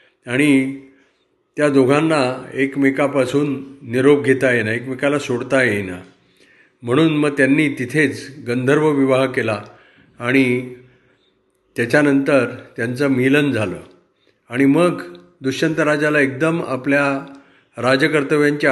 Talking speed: 95 wpm